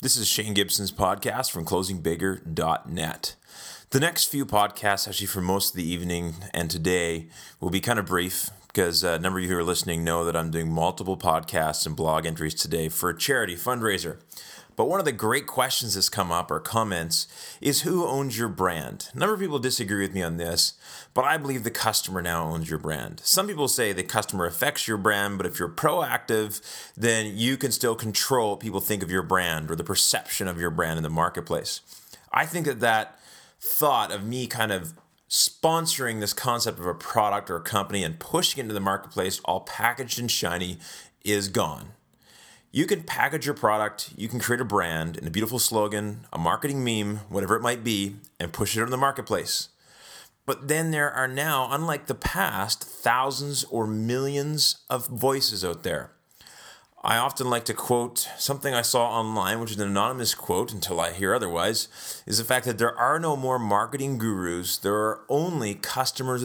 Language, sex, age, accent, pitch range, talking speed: English, male, 30-49, American, 90-125 Hz, 195 wpm